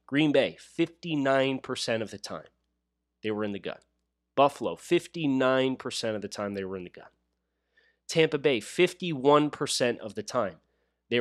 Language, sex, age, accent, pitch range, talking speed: English, male, 30-49, American, 100-165 Hz, 150 wpm